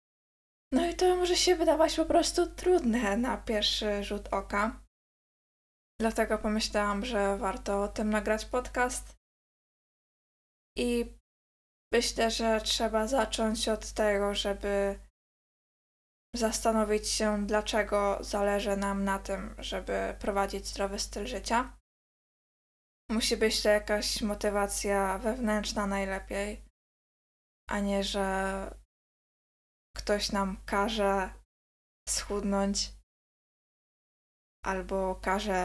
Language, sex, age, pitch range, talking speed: Polish, female, 20-39, 200-230 Hz, 95 wpm